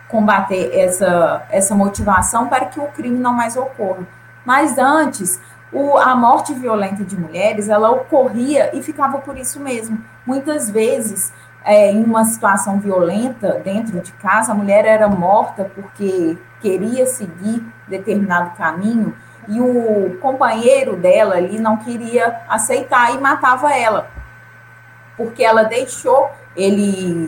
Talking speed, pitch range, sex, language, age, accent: 130 wpm, 195-260 Hz, female, Portuguese, 20-39, Brazilian